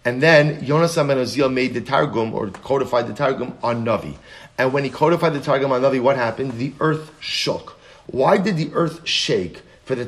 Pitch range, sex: 135-170 Hz, male